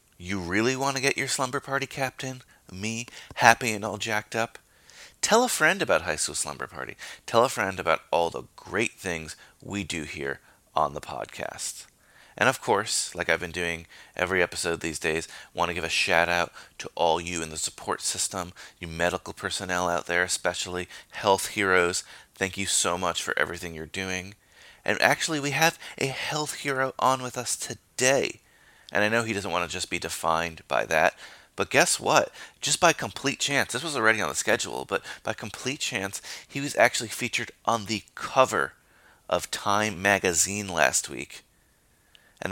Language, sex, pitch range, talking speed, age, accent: English, male, 90-120 Hz, 180 wpm, 30-49, American